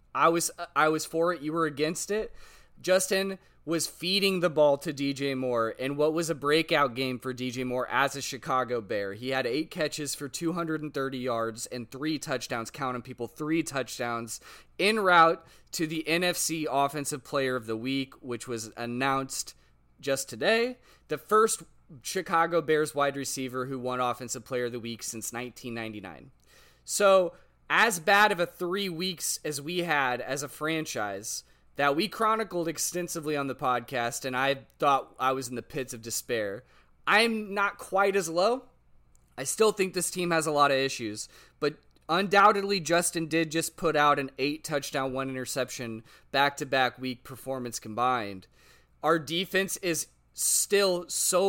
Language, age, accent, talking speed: English, 20-39, American, 165 wpm